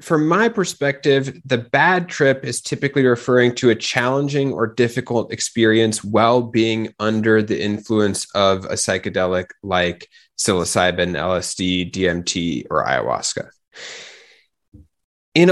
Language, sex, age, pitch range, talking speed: English, male, 20-39, 105-140 Hz, 115 wpm